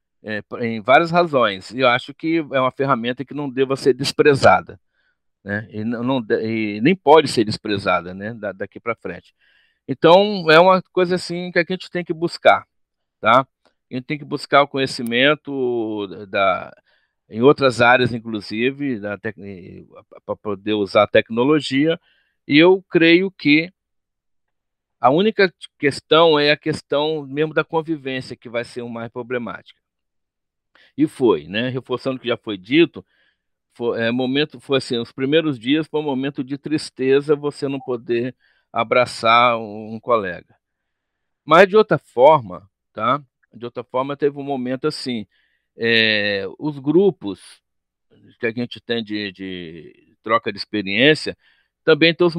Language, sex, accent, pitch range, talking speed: Portuguese, male, Brazilian, 120-155 Hz, 155 wpm